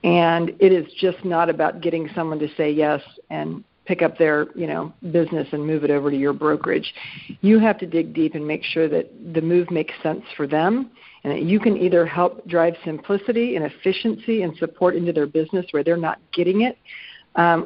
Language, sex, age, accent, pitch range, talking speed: English, female, 50-69, American, 160-200 Hz, 210 wpm